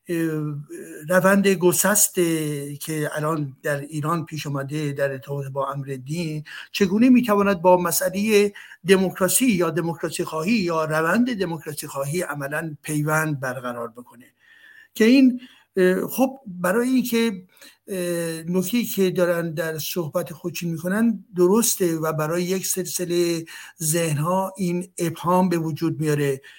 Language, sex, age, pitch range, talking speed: Persian, male, 60-79, 160-200 Hz, 115 wpm